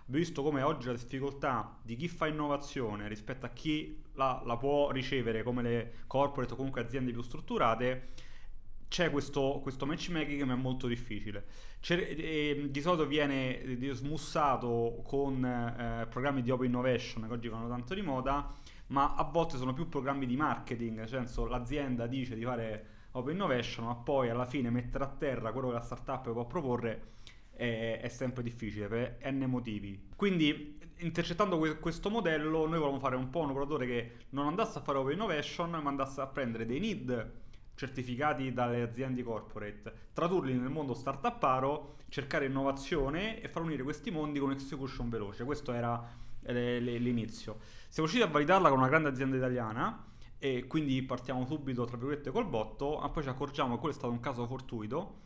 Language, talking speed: Italian, 170 wpm